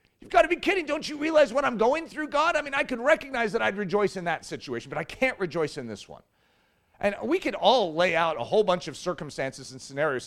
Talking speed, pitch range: 255 wpm, 170-235 Hz